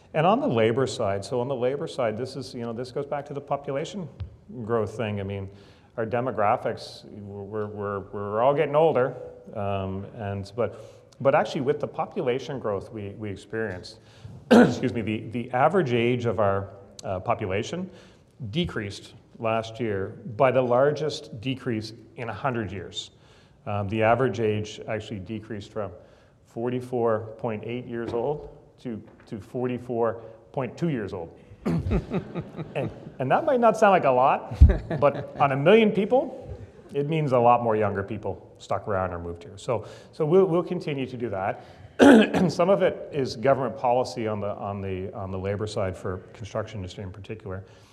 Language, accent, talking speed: English, American, 165 wpm